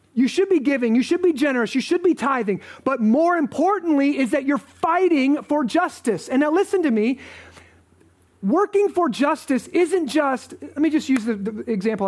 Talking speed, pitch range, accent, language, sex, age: 190 wpm, 235-310 Hz, American, English, male, 30-49